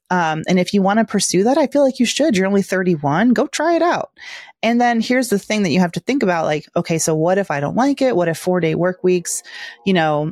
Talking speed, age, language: 280 wpm, 30-49, English